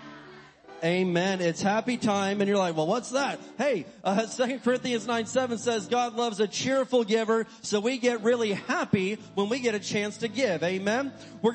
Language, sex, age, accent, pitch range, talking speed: English, male, 30-49, American, 175-230 Hz, 180 wpm